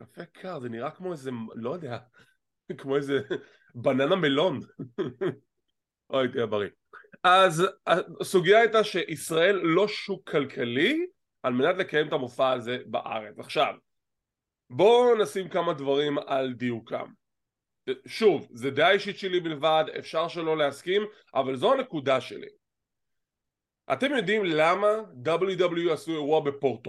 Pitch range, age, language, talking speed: 135-200 Hz, 20-39, English, 115 wpm